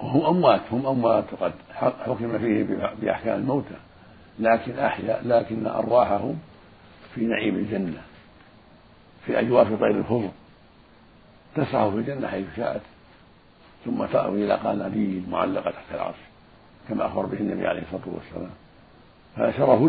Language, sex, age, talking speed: Arabic, male, 60-79, 120 wpm